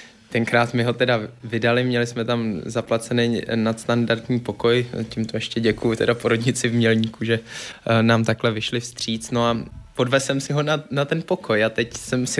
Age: 20-39